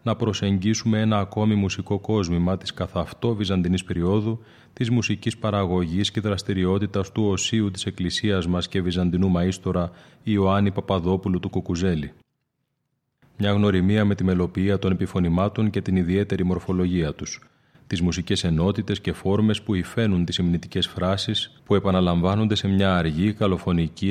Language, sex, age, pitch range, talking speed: Greek, male, 30-49, 90-110 Hz, 135 wpm